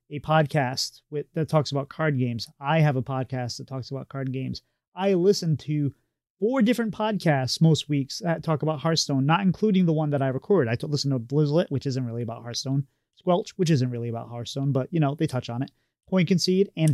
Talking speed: 215 wpm